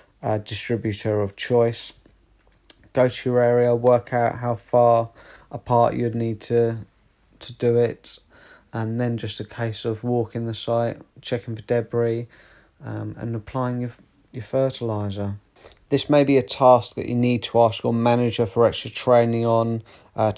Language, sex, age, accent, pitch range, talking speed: English, male, 30-49, British, 110-125 Hz, 160 wpm